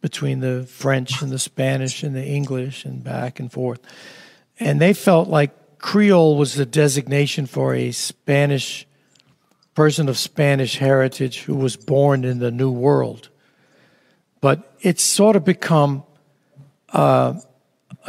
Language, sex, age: English, male, 60-79